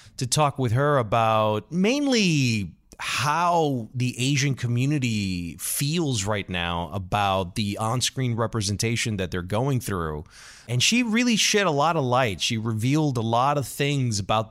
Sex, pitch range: male, 115-160 Hz